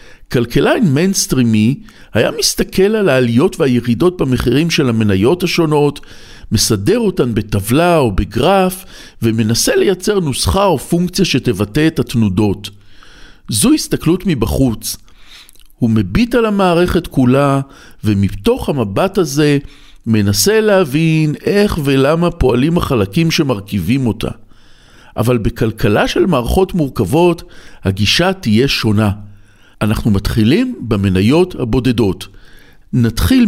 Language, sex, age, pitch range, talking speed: Hebrew, male, 50-69, 105-170 Hz, 100 wpm